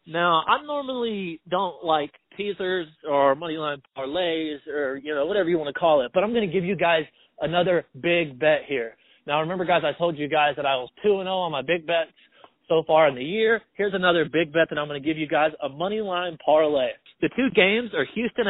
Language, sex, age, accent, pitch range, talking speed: English, male, 20-39, American, 155-205 Hz, 230 wpm